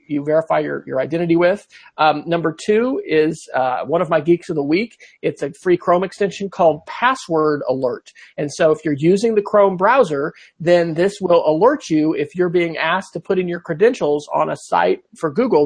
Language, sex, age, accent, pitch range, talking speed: English, male, 40-59, American, 155-185 Hz, 205 wpm